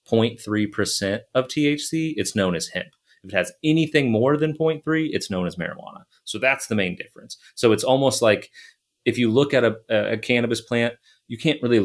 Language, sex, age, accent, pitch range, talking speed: English, male, 30-49, American, 95-120 Hz, 185 wpm